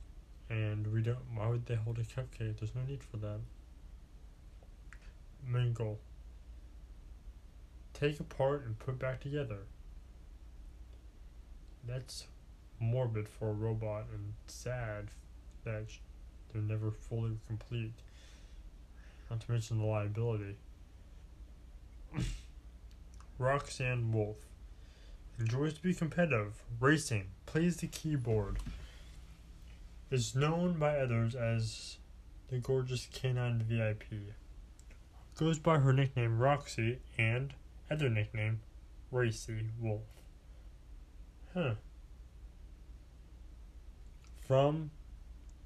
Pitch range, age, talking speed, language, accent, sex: 75-120 Hz, 20-39, 90 wpm, English, American, male